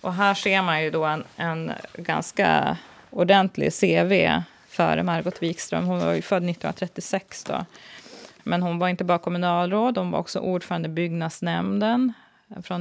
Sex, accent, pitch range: female, native, 165-190 Hz